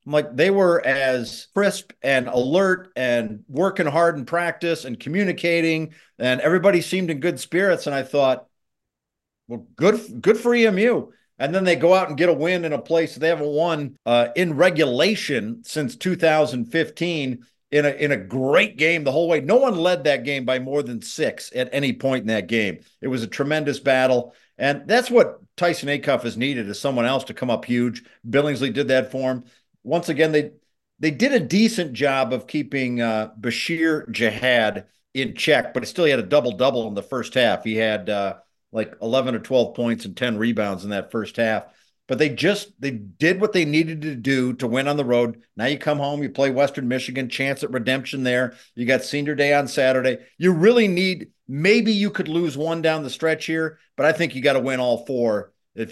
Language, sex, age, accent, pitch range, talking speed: English, male, 50-69, American, 125-170 Hz, 205 wpm